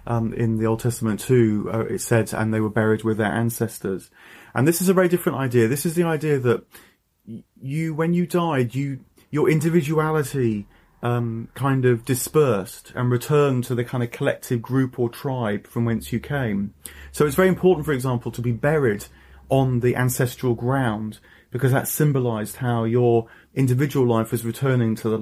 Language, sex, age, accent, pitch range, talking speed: English, male, 30-49, British, 115-130 Hz, 185 wpm